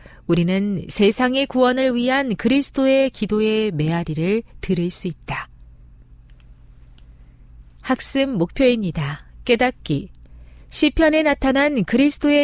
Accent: native